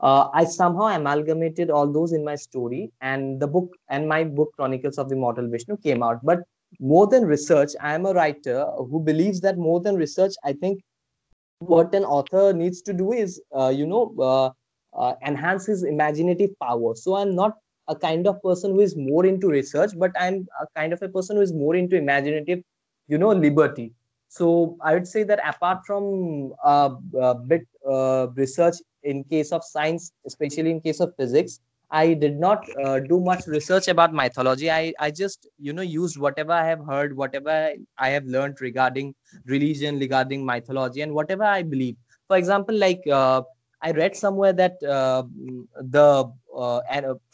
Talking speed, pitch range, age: 185 wpm, 135-180 Hz, 20-39